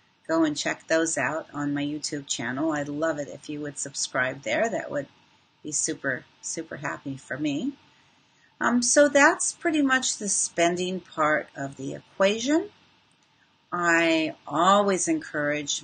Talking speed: 150 wpm